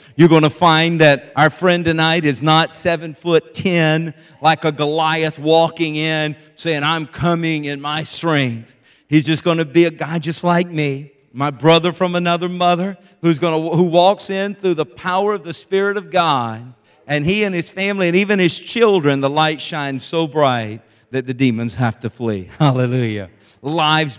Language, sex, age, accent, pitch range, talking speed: English, male, 50-69, American, 130-160 Hz, 185 wpm